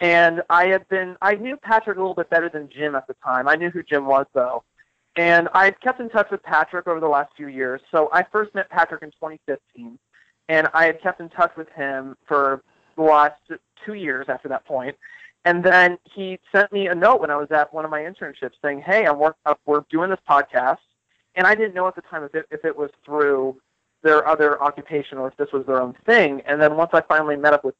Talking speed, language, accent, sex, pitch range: 240 wpm, English, American, male, 145-180 Hz